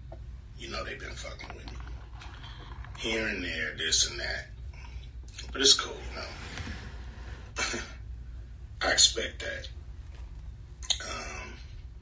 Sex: male